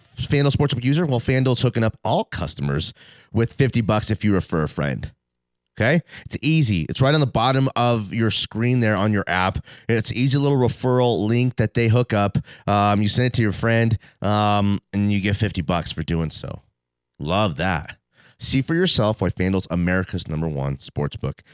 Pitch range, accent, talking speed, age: 100-135 Hz, American, 190 wpm, 30-49